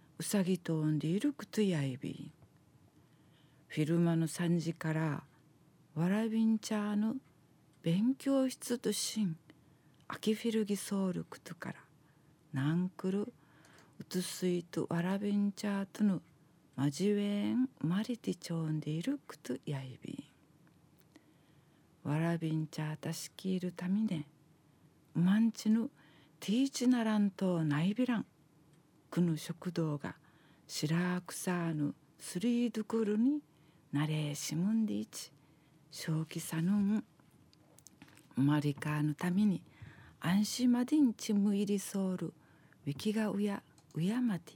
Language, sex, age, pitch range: Japanese, female, 50-69, 155-205 Hz